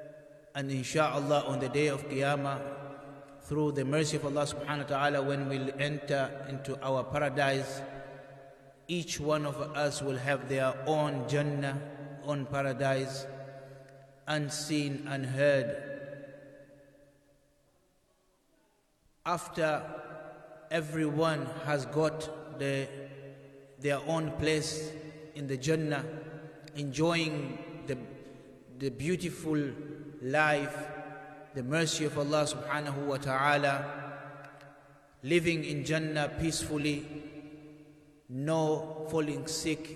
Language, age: English, 30-49